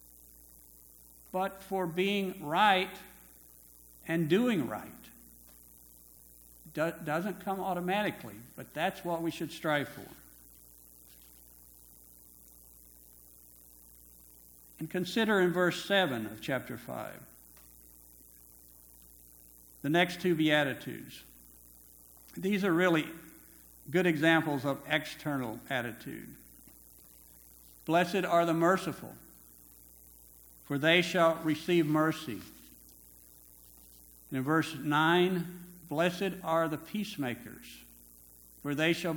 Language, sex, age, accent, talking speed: English, male, 60-79, American, 85 wpm